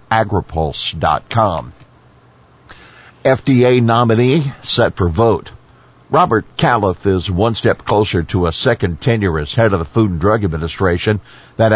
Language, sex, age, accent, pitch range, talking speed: English, male, 60-79, American, 85-105 Hz, 130 wpm